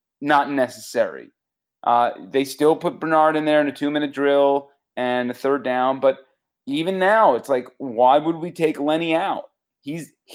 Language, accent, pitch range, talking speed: English, American, 125-165 Hz, 170 wpm